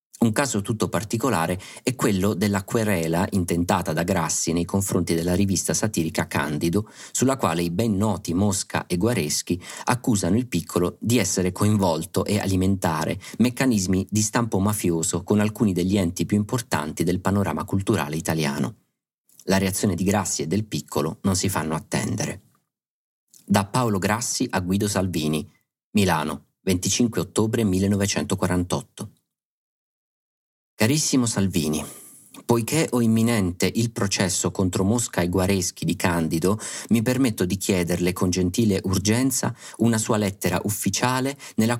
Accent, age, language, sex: native, 40-59, Italian, male